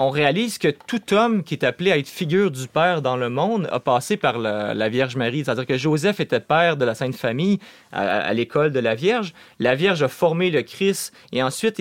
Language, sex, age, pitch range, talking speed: French, male, 30-49, 130-190 Hz, 230 wpm